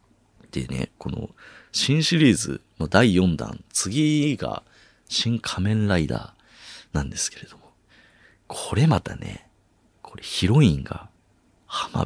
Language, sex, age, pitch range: Japanese, male, 40-59, 75-110 Hz